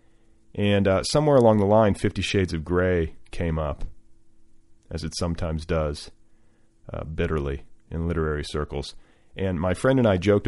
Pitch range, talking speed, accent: 85-105 Hz, 155 wpm, American